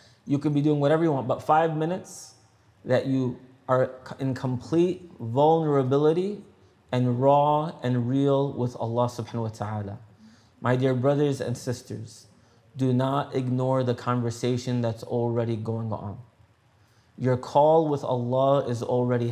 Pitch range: 115-135 Hz